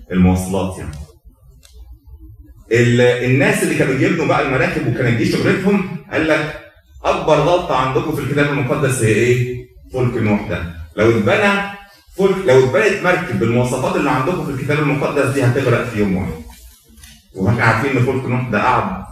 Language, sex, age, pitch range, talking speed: Arabic, male, 30-49, 95-145 Hz, 150 wpm